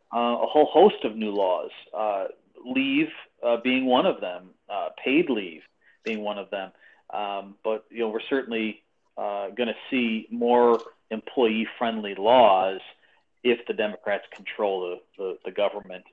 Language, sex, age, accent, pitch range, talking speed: English, male, 40-59, American, 110-155 Hz, 160 wpm